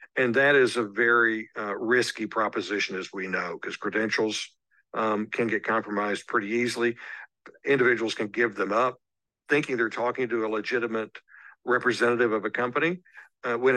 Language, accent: English, American